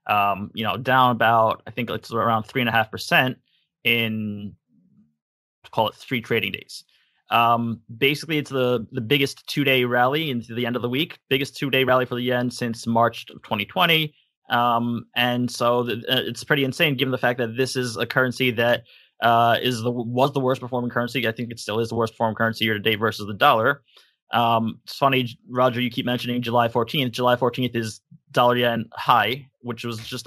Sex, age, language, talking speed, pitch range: male, 20-39, English, 200 wpm, 115-130 Hz